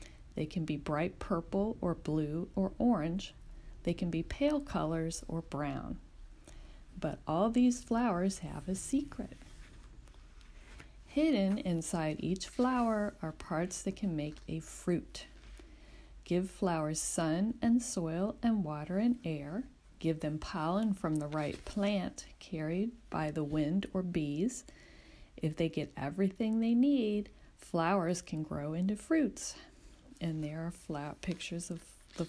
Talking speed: 135 wpm